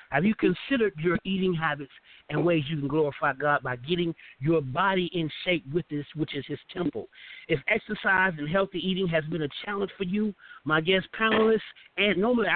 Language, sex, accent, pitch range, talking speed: English, male, American, 150-200 Hz, 190 wpm